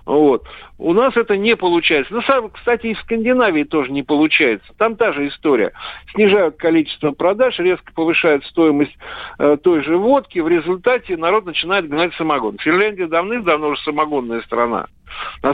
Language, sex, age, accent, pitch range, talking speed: Russian, male, 50-69, native, 155-225 Hz, 145 wpm